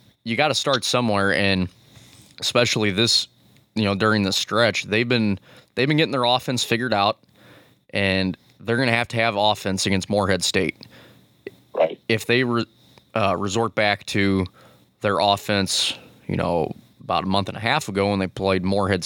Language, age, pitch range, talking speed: English, 20-39, 95-115 Hz, 175 wpm